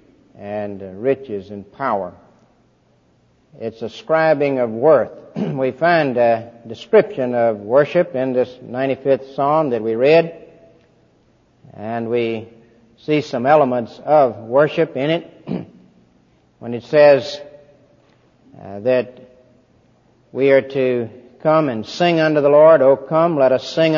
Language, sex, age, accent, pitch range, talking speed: English, male, 60-79, American, 120-155 Hz, 125 wpm